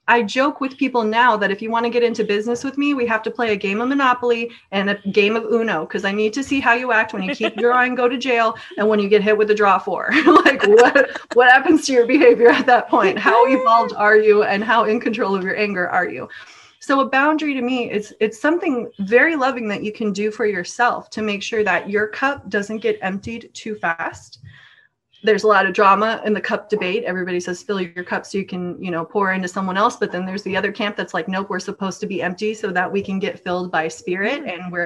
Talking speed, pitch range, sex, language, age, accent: 255 wpm, 200-255 Hz, female, English, 20-39, American